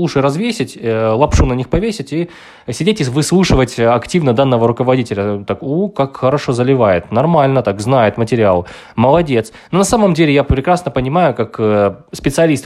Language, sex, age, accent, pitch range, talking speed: Ukrainian, male, 20-39, native, 115-150 Hz, 150 wpm